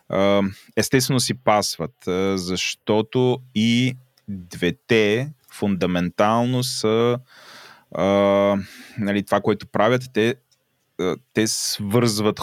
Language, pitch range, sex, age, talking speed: Bulgarian, 90-110 Hz, male, 20-39, 70 wpm